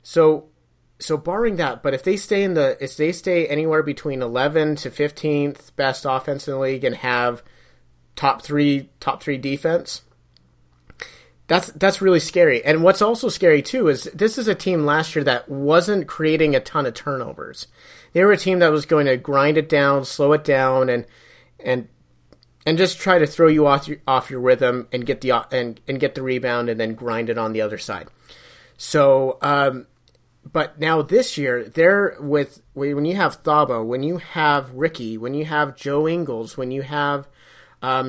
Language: English